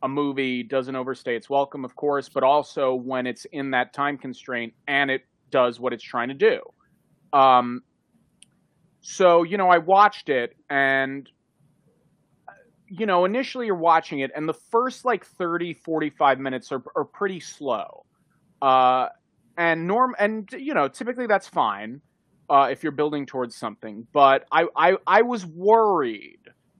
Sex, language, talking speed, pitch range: male, English, 155 wpm, 135-180 Hz